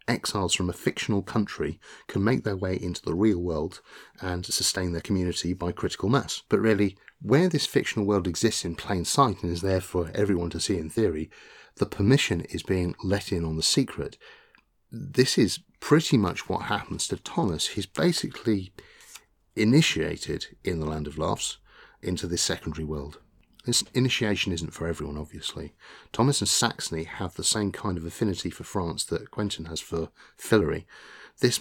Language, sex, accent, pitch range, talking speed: English, male, British, 85-110 Hz, 175 wpm